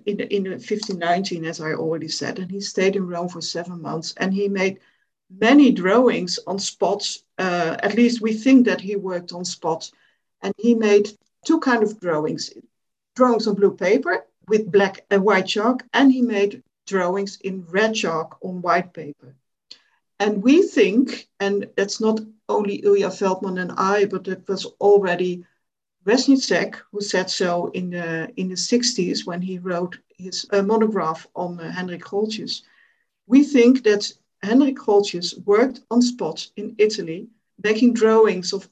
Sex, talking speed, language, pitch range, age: female, 165 wpm, English, 180-220 Hz, 50-69